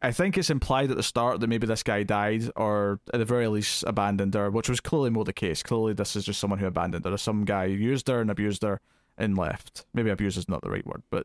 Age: 20-39